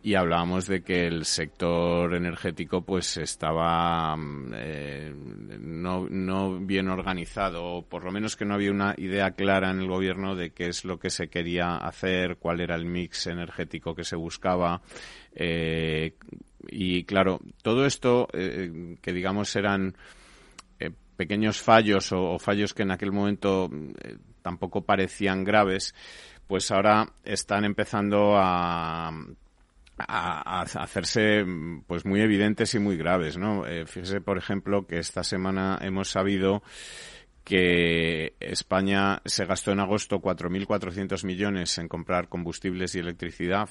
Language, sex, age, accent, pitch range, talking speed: Spanish, male, 30-49, Spanish, 85-100 Hz, 140 wpm